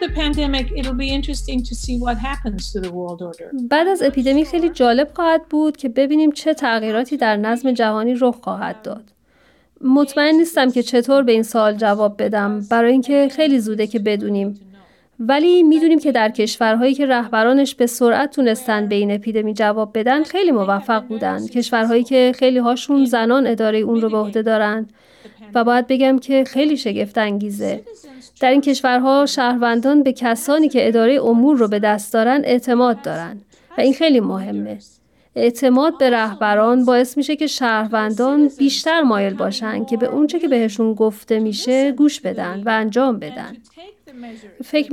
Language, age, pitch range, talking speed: Persian, 30-49, 220-275 Hz, 145 wpm